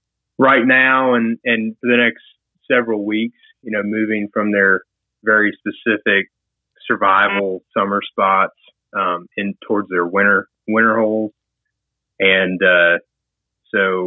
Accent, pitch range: American, 95-120 Hz